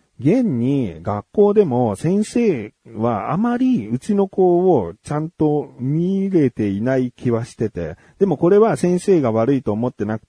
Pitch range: 110-180 Hz